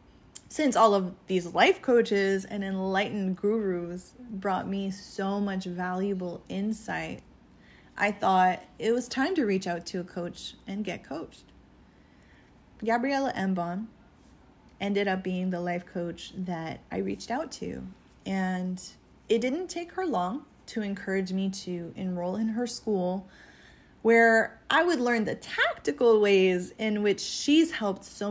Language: English